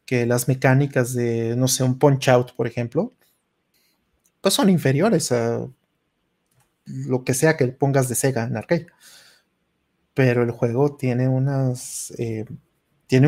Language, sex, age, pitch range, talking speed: Spanish, male, 30-49, 125-150 Hz, 140 wpm